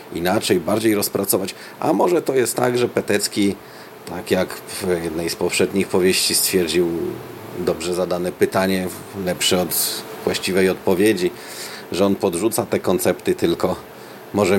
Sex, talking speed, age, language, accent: male, 130 wpm, 40-59, Polish, native